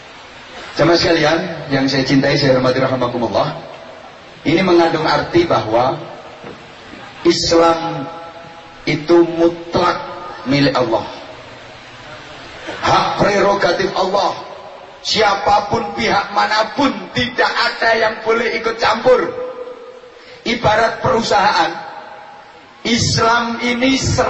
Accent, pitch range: Indonesian, 165-235 Hz